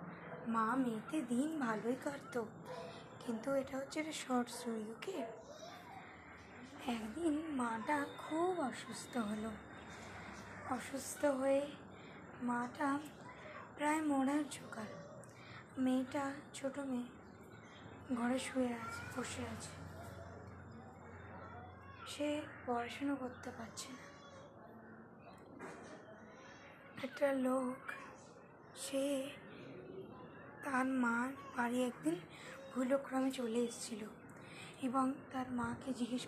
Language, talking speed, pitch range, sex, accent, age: Bengali, 80 wpm, 225-270 Hz, female, native, 20-39